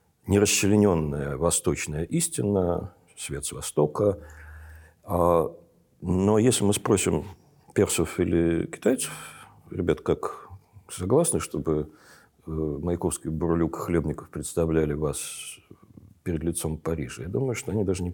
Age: 50-69